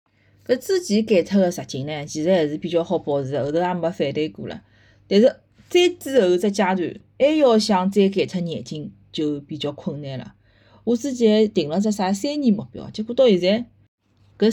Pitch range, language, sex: 155-205 Hz, Chinese, female